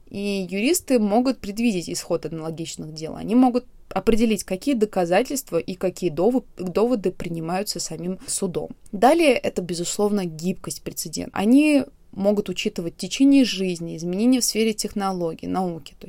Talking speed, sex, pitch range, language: 130 wpm, female, 175-225 Hz, Russian